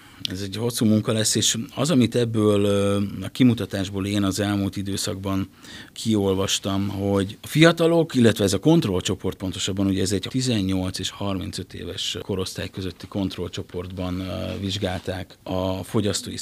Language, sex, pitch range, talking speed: Hungarian, male, 95-110 Hz, 135 wpm